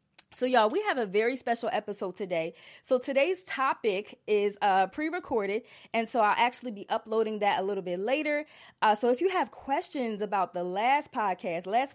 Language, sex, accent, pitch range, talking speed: English, female, American, 205-270 Hz, 190 wpm